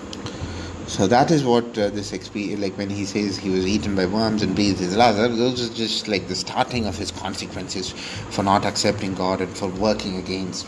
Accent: Indian